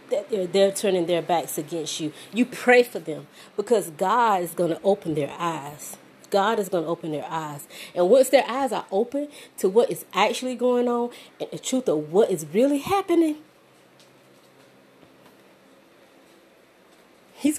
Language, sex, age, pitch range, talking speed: English, female, 30-49, 165-250 Hz, 165 wpm